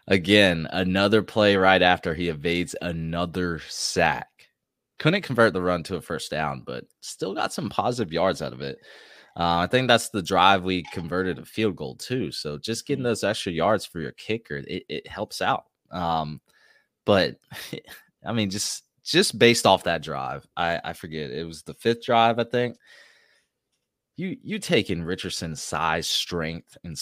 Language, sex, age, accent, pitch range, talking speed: English, male, 20-39, American, 80-105 Hz, 175 wpm